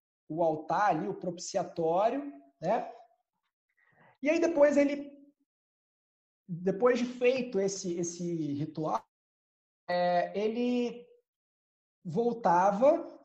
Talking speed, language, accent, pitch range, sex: 85 wpm, Portuguese, Brazilian, 195-275 Hz, male